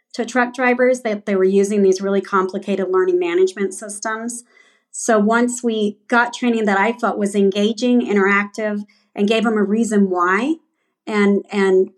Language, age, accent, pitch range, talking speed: English, 40-59, American, 200-240 Hz, 160 wpm